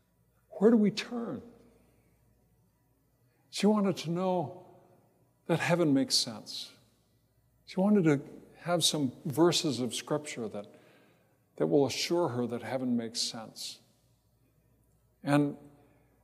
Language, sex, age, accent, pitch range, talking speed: English, male, 50-69, American, 125-155 Hz, 110 wpm